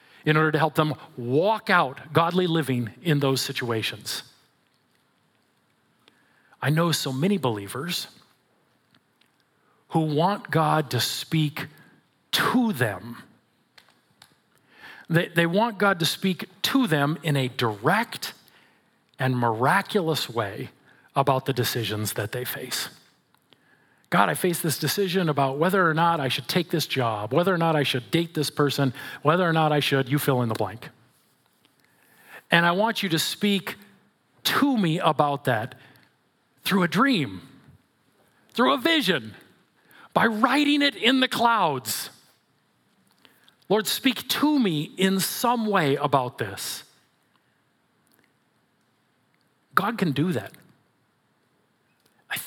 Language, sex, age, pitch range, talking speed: English, male, 40-59, 135-195 Hz, 130 wpm